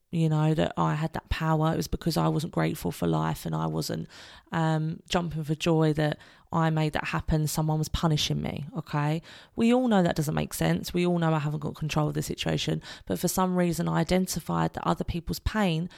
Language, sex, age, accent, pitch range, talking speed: English, female, 20-39, British, 150-185 Hz, 220 wpm